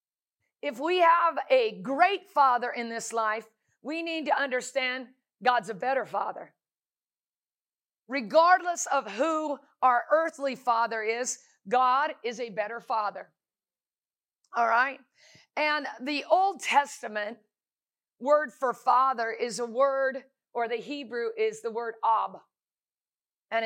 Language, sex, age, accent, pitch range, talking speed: English, female, 50-69, American, 225-285 Hz, 125 wpm